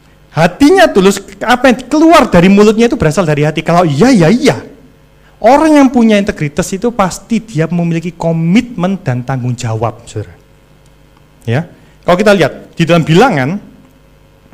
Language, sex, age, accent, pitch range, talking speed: Indonesian, male, 30-49, native, 145-220 Hz, 145 wpm